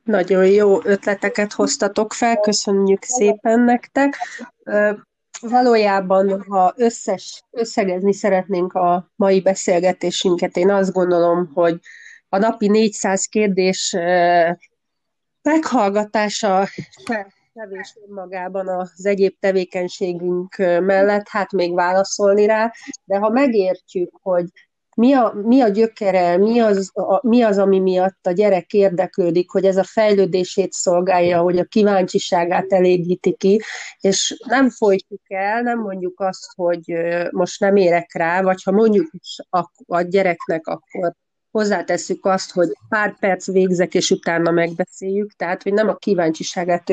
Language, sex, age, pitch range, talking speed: Hungarian, female, 30-49, 180-210 Hz, 125 wpm